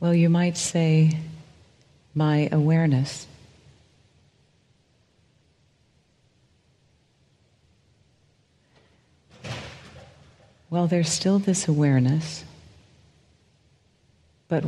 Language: English